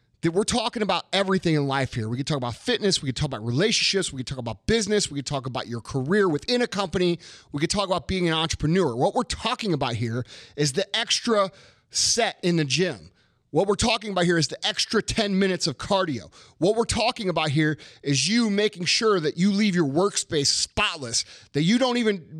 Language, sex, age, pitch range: English, male, 30-49, 145-215 Hz